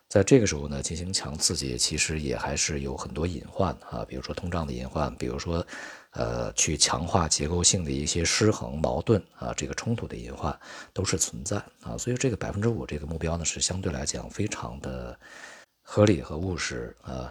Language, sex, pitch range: Chinese, male, 70-100 Hz